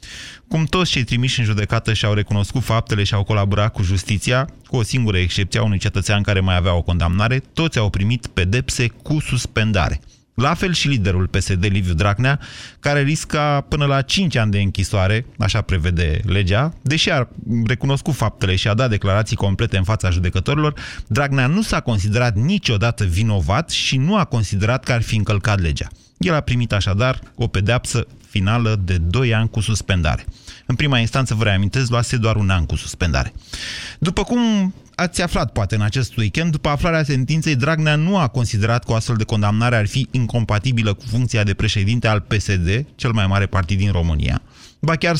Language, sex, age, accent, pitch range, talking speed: Romanian, male, 30-49, native, 100-130 Hz, 180 wpm